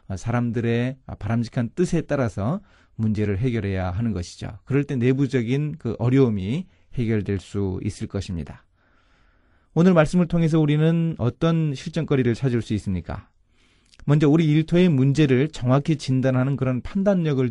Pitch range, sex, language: 105-145 Hz, male, Korean